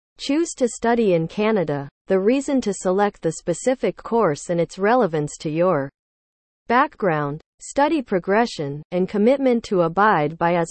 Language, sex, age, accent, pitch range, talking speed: English, female, 40-59, American, 165-230 Hz, 145 wpm